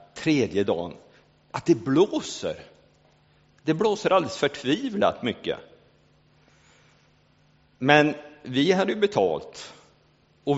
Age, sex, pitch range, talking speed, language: 50-69, male, 100-145 Hz, 90 wpm, Swedish